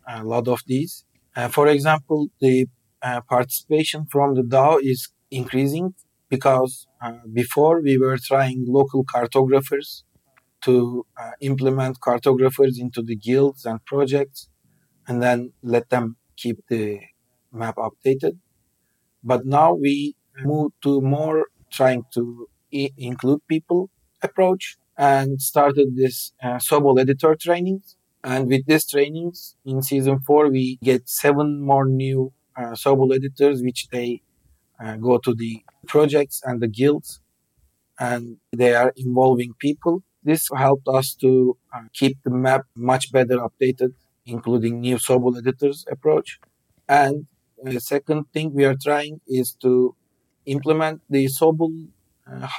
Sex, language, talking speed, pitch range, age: male, English, 135 wpm, 125-145 Hz, 40-59